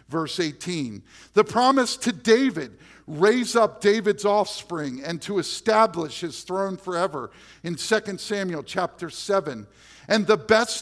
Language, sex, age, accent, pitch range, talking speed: English, male, 50-69, American, 170-240 Hz, 135 wpm